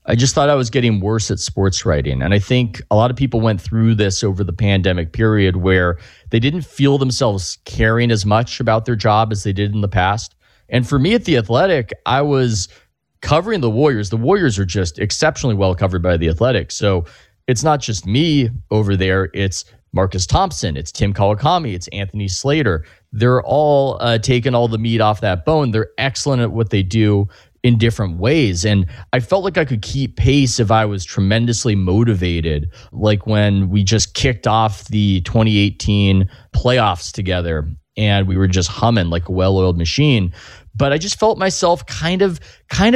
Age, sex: 30-49, male